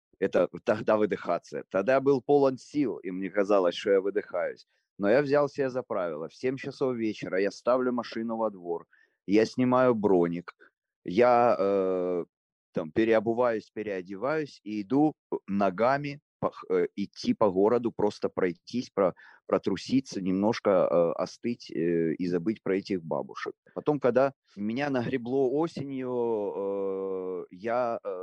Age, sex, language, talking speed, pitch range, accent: 30-49, male, Ukrainian, 120 wpm, 100-135 Hz, native